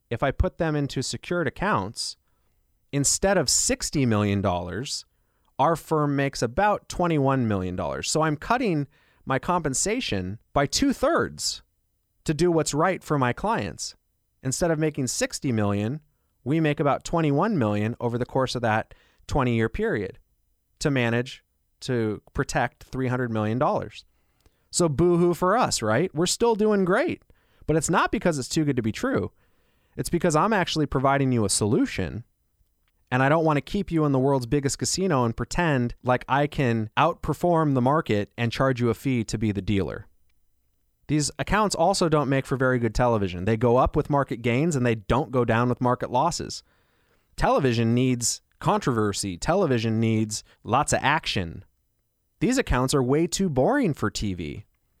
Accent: American